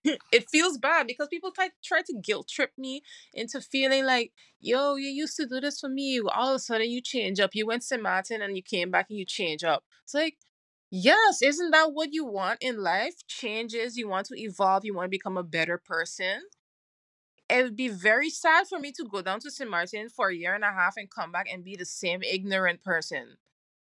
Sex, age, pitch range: female, 20-39, 180-255 Hz